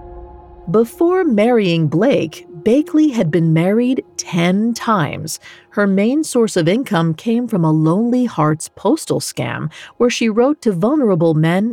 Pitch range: 160-230 Hz